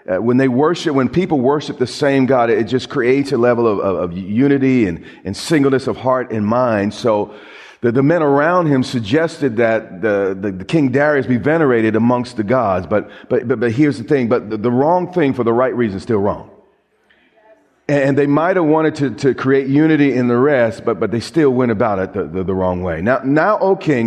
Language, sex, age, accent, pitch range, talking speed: English, male, 40-59, American, 115-150 Hz, 230 wpm